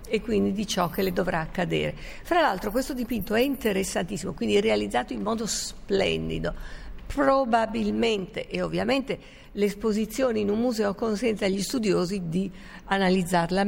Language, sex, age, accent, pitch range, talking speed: Italian, female, 50-69, native, 185-245 Hz, 140 wpm